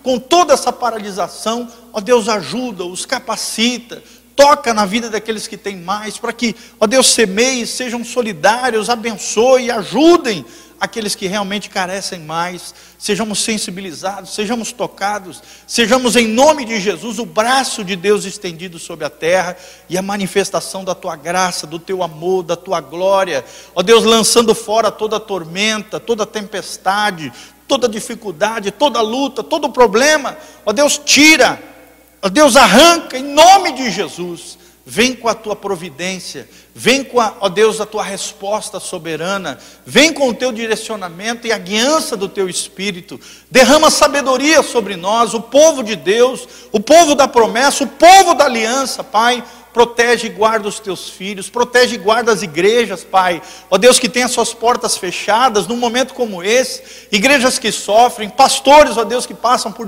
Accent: Brazilian